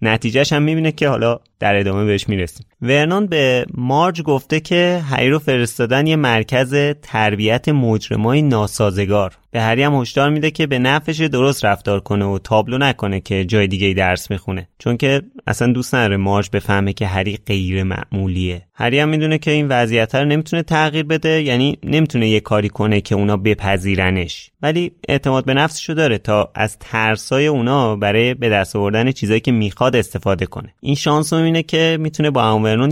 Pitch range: 105-150 Hz